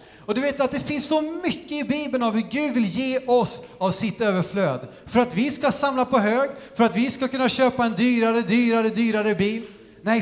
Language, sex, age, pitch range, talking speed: Swedish, male, 30-49, 170-255 Hz, 225 wpm